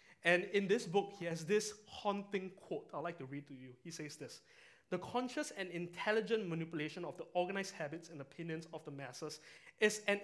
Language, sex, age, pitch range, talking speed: English, male, 20-39, 135-180 Hz, 200 wpm